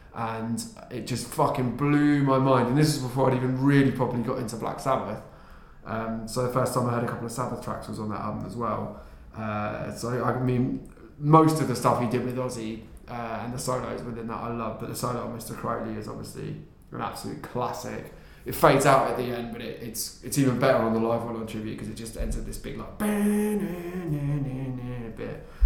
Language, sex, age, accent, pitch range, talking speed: English, male, 20-39, British, 115-130 Hz, 220 wpm